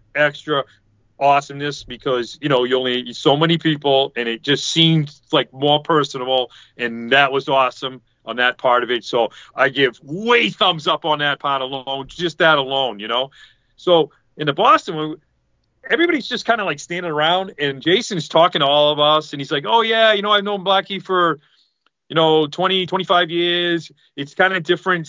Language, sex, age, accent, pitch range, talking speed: English, male, 30-49, American, 135-165 Hz, 190 wpm